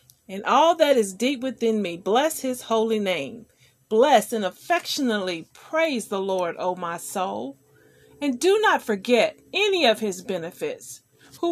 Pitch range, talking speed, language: 215-315 Hz, 150 wpm, English